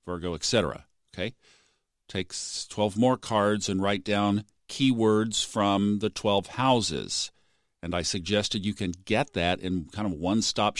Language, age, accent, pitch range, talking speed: English, 50-69, American, 90-115 Hz, 150 wpm